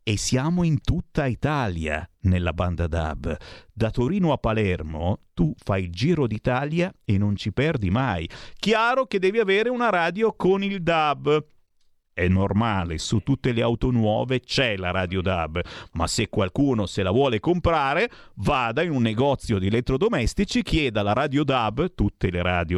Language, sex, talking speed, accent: Italian, male, 165 wpm, native